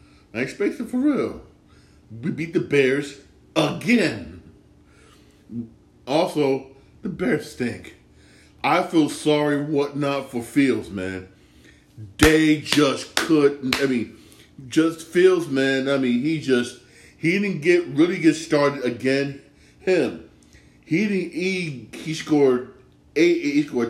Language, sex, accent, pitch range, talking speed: English, male, American, 115-150 Hz, 125 wpm